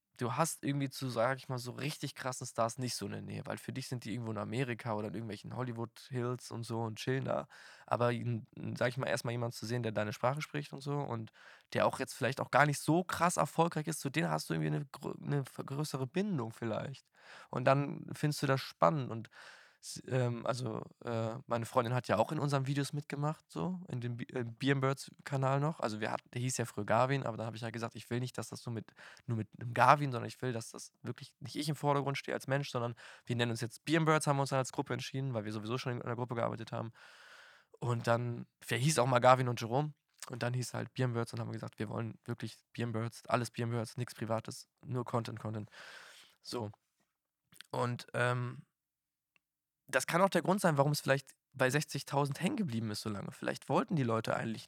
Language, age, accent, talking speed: German, 20-39, German, 230 wpm